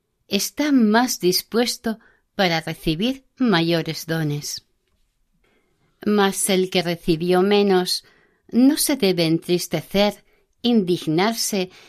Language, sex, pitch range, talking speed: Spanish, female, 175-230 Hz, 85 wpm